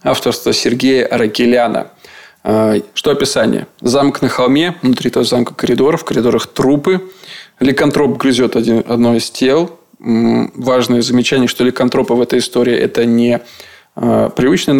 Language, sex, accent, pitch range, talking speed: Russian, male, native, 115-130 Hz, 130 wpm